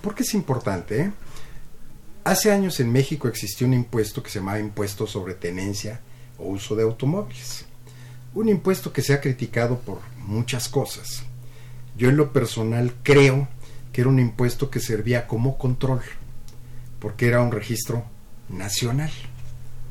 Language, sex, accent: Spanish, male, Mexican